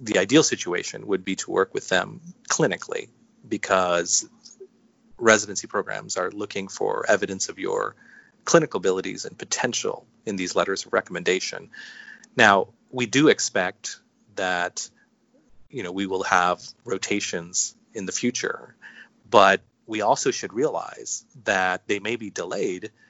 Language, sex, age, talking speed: English, male, 30-49, 135 wpm